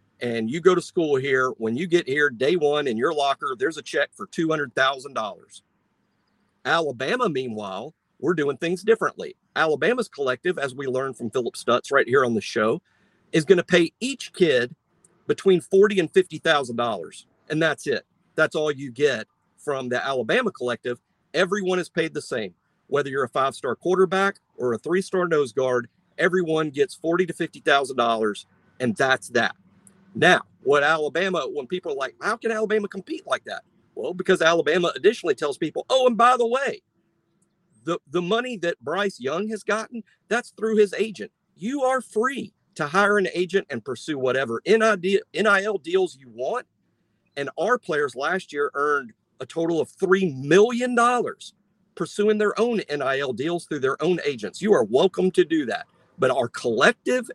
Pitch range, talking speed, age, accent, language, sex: 145-215 Hz, 170 wpm, 50-69, American, English, male